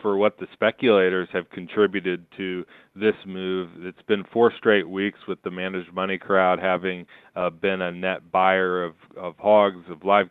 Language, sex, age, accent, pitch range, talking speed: English, male, 40-59, American, 90-95 Hz, 175 wpm